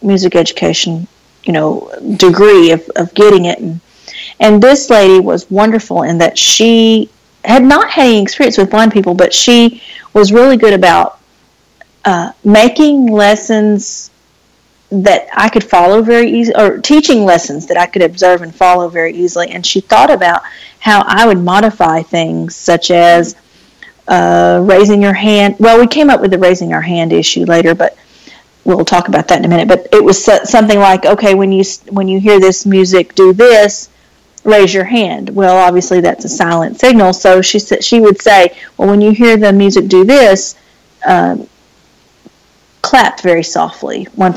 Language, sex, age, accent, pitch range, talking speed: English, female, 40-59, American, 180-225 Hz, 175 wpm